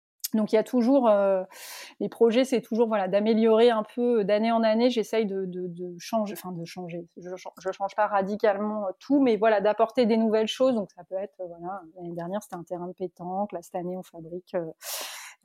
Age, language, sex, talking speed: 30-49, French, female, 220 wpm